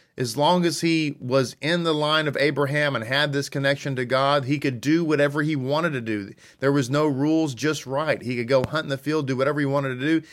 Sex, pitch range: male, 120-155 Hz